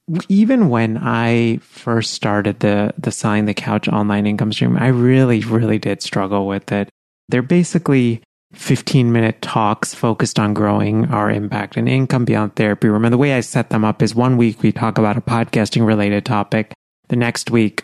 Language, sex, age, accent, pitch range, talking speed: English, male, 30-49, American, 105-125 Hz, 175 wpm